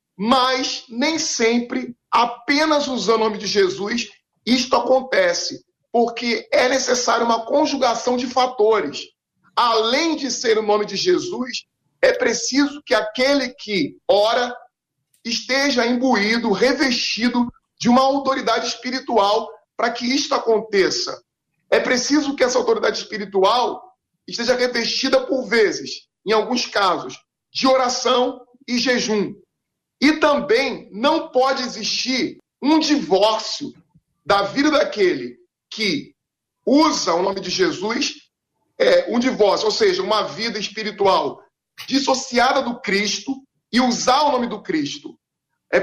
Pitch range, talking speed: 215-280 Hz, 120 wpm